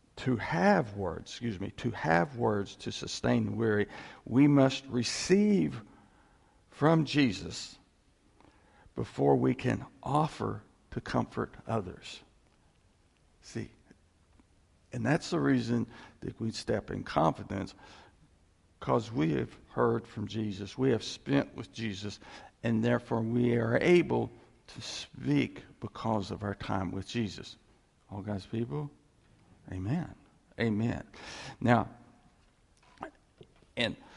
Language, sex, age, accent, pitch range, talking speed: English, male, 60-79, American, 95-130 Hz, 115 wpm